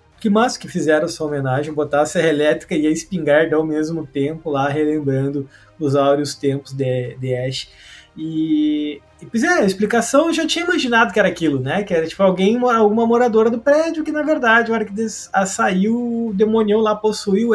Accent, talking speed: Brazilian, 195 wpm